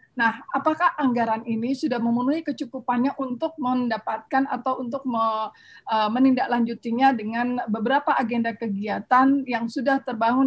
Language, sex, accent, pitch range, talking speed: Indonesian, female, native, 225-275 Hz, 115 wpm